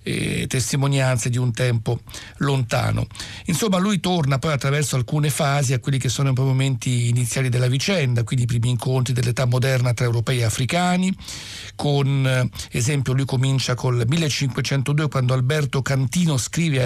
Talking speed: 155 wpm